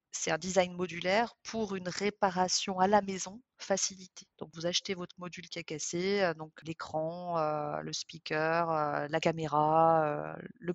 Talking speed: 160 wpm